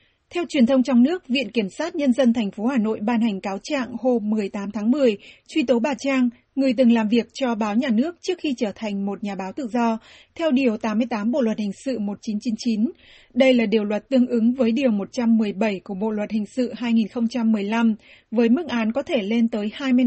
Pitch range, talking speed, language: 220-265 Hz, 220 wpm, Vietnamese